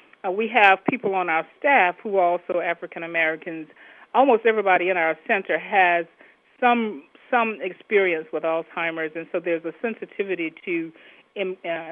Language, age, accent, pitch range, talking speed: English, 40-59, American, 160-210 Hz, 145 wpm